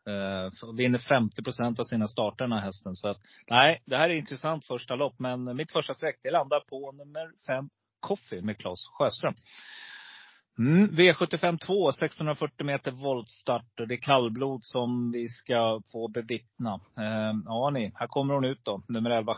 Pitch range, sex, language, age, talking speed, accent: 110-135 Hz, male, Swedish, 30-49, 165 wpm, native